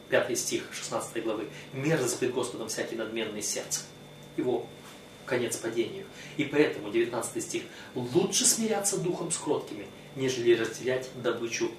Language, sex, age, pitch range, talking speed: Russian, male, 30-49, 125-160 Hz, 125 wpm